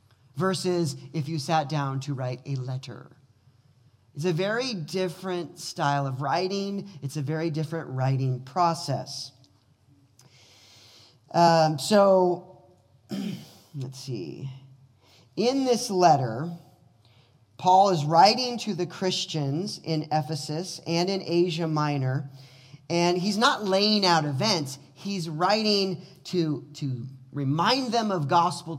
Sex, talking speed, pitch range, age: male, 115 wpm, 135-185 Hz, 40-59